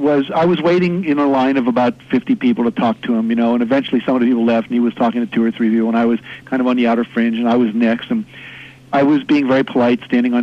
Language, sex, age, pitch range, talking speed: English, male, 50-69, 125-185 Hz, 315 wpm